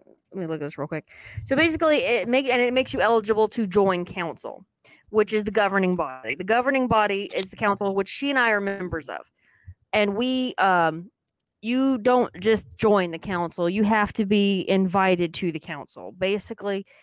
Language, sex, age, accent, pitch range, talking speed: English, female, 20-39, American, 185-230 Hz, 195 wpm